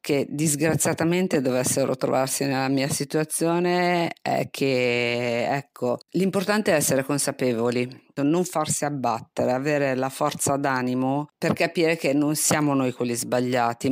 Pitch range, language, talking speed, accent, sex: 125-160 Hz, Italian, 125 wpm, native, female